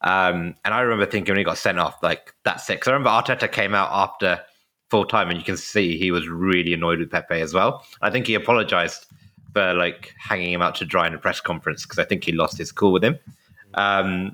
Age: 20-39